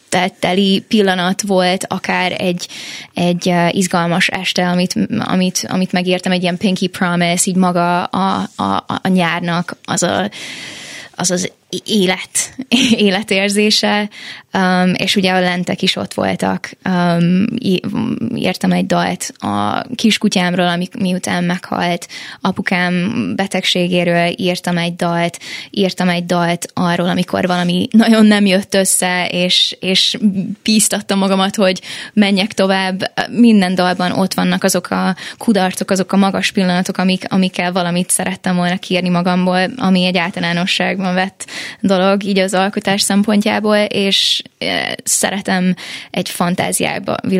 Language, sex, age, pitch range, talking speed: Hungarian, female, 20-39, 180-200 Hz, 125 wpm